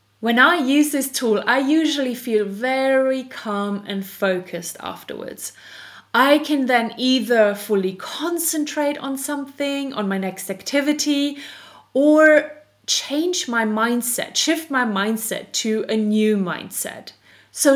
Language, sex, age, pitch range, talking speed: English, female, 30-49, 195-275 Hz, 125 wpm